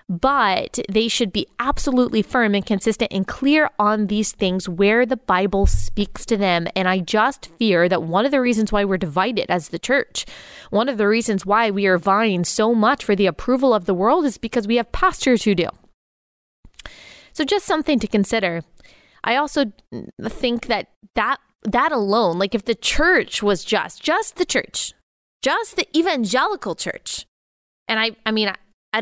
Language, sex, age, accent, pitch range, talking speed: English, female, 20-39, American, 195-260 Hz, 180 wpm